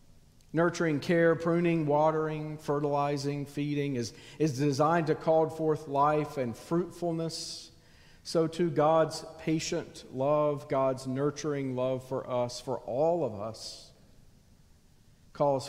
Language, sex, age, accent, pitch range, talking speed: English, male, 50-69, American, 140-175 Hz, 115 wpm